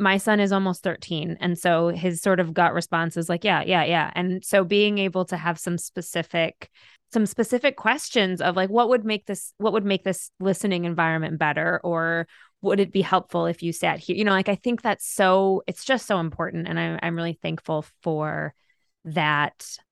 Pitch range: 165-195 Hz